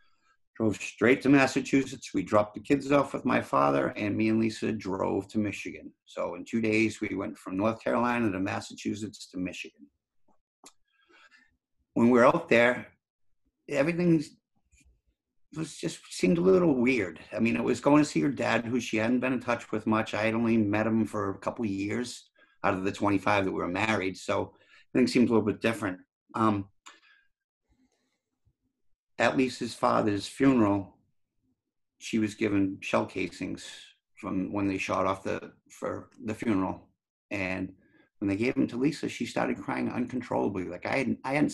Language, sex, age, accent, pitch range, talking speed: English, male, 50-69, American, 105-135 Hz, 175 wpm